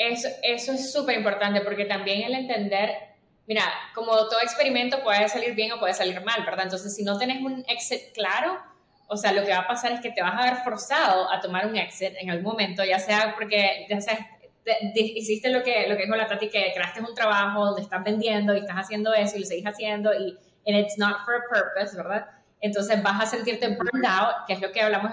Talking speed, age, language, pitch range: 235 wpm, 10-29, English, 200-240 Hz